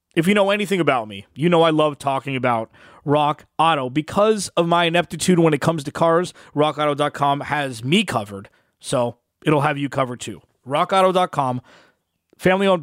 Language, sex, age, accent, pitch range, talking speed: English, male, 20-39, American, 130-170 Hz, 165 wpm